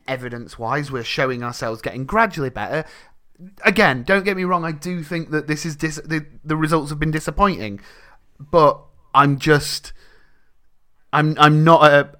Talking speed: 160 wpm